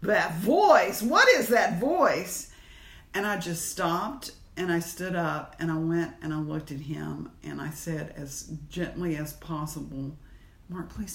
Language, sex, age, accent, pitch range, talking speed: English, female, 50-69, American, 150-195 Hz, 165 wpm